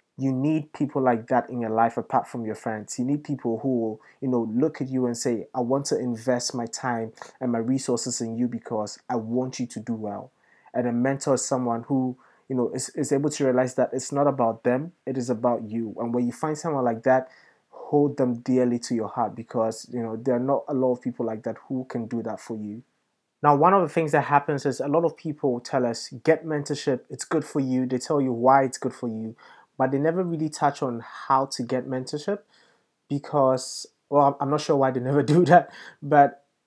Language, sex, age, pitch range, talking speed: English, male, 20-39, 125-150 Hz, 235 wpm